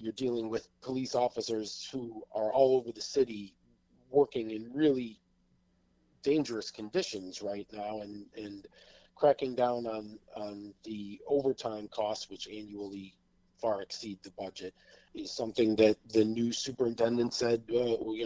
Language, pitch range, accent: English, 95-115 Hz, American